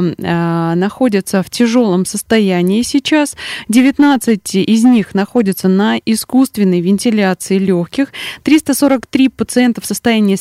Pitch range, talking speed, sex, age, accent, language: 190-245 Hz, 100 wpm, female, 20-39, native, Russian